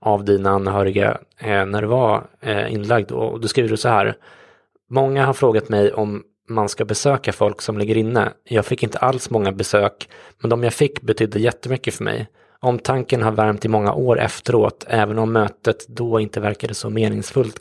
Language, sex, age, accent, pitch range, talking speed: English, male, 20-39, Swedish, 105-120 Hz, 185 wpm